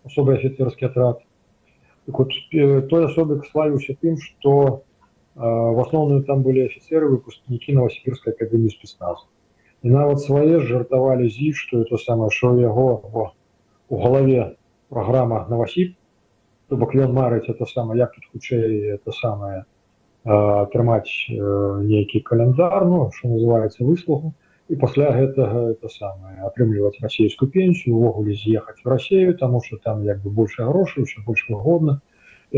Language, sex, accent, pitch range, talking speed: Russian, male, native, 110-140 Hz, 140 wpm